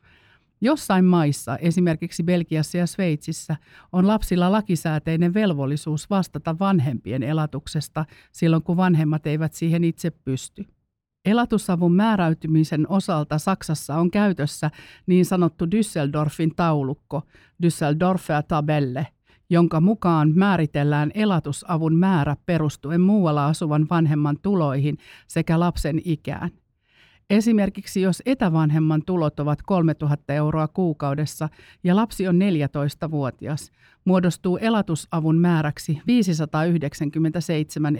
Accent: native